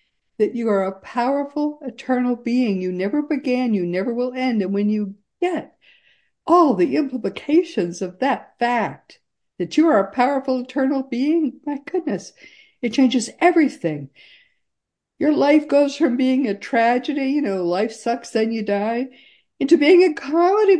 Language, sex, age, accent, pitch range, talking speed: English, female, 60-79, American, 230-315 Hz, 155 wpm